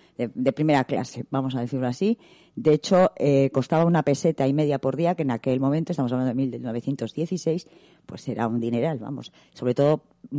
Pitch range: 135-170 Hz